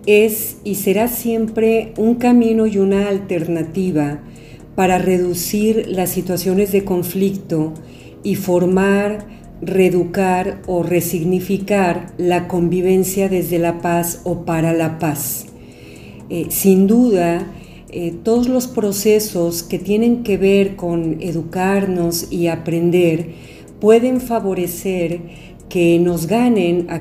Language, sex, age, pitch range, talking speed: Spanish, female, 40-59, 175-205 Hz, 110 wpm